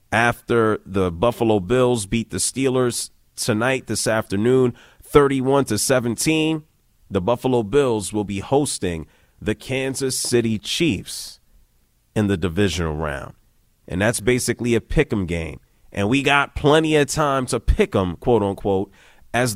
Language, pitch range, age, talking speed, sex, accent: English, 95-125 Hz, 30-49, 140 wpm, male, American